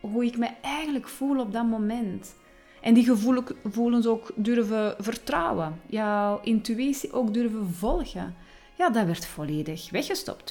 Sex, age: female, 30-49